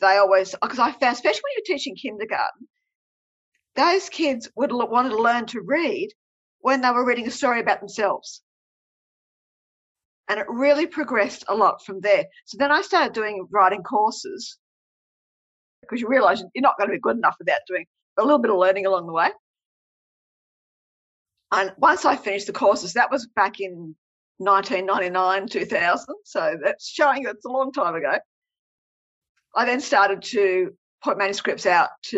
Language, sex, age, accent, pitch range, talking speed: English, female, 50-69, Australian, 200-300 Hz, 170 wpm